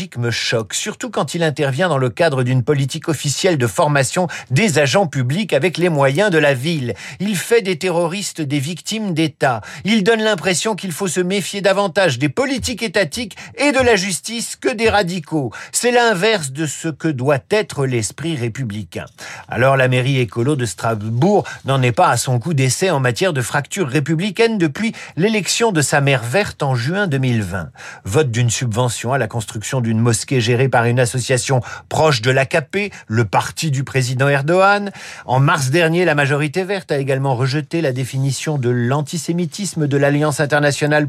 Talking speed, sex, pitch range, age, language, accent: 175 wpm, male, 125-180 Hz, 50-69, French, French